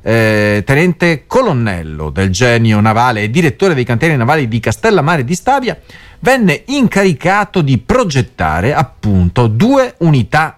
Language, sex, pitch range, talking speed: Italian, male, 110-175 Hz, 120 wpm